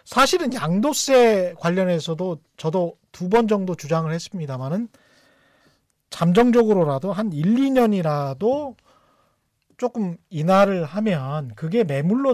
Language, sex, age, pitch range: Korean, male, 40-59, 160-235 Hz